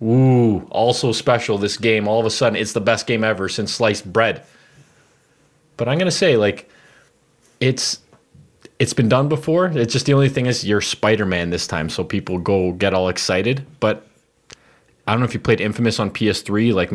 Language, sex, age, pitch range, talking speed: English, male, 20-39, 105-140 Hz, 195 wpm